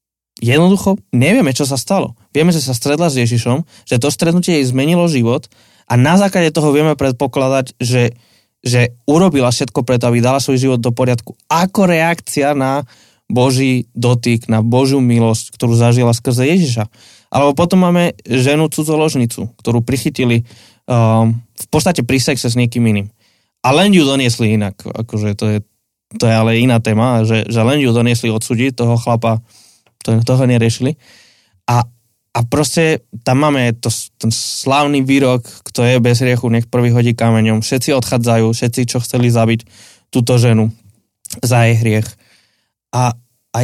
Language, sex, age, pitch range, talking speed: Slovak, male, 20-39, 115-140 Hz, 155 wpm